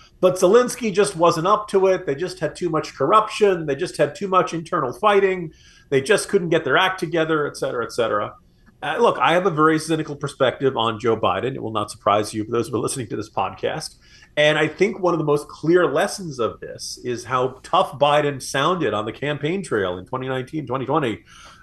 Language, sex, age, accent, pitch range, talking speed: English, male, 40-59, American, 130-185 Hz, 215 wpm